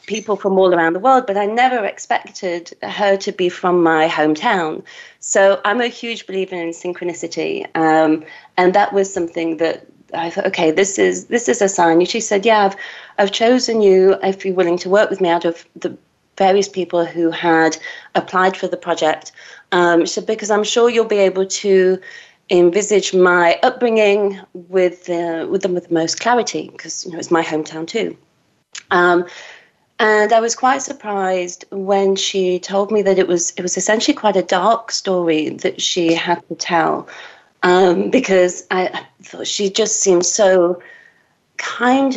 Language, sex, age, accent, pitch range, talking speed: English, female, 30-49, British, 175-220 Hz, 180 wpm